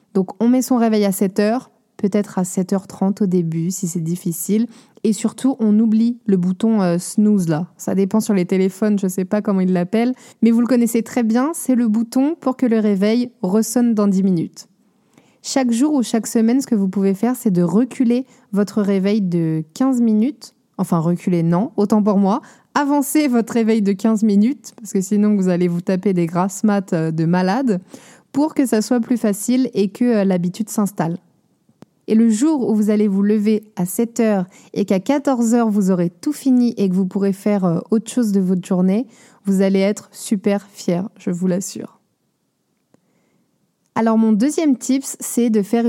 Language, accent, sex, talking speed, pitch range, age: French, French, female, 190 wpm, 195-240 Hz, 20-39